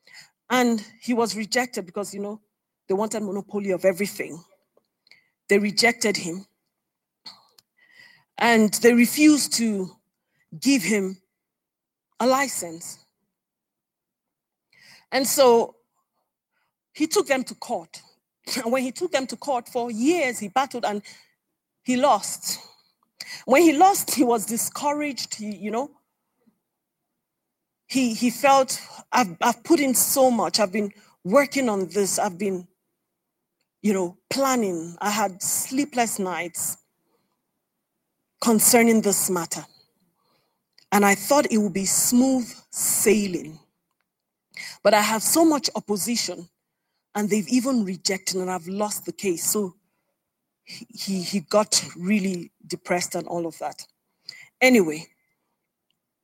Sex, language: female, English